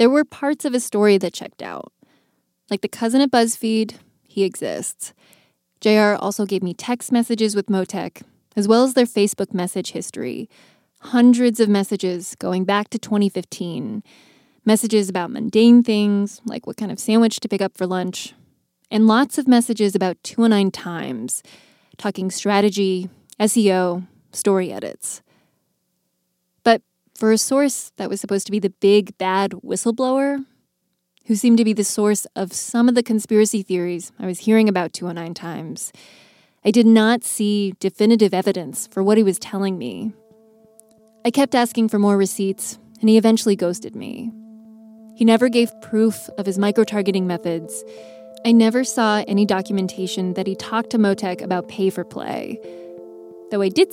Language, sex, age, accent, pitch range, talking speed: English, female, 20-39, American, 190-230 Hz, 155 wpm